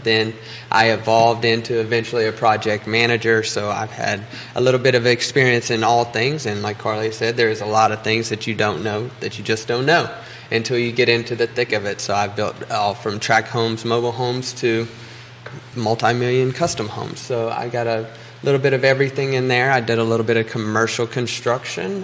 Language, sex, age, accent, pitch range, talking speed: English, male, 20-39, American, 115-130 Hz, 210 wpm